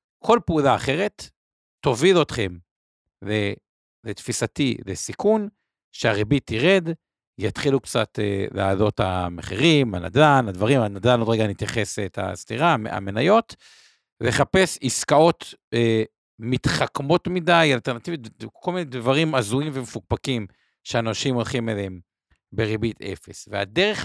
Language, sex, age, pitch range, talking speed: Hebrew, male, 50-69, 100-140 Hz, 95 wpm